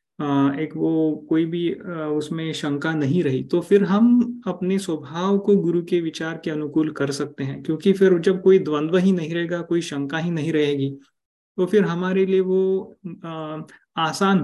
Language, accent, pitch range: Hindi, native, 150-185 Hz